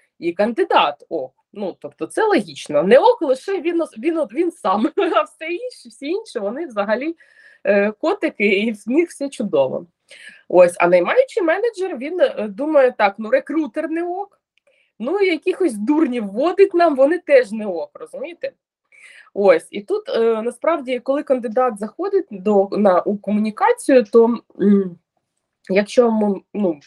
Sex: female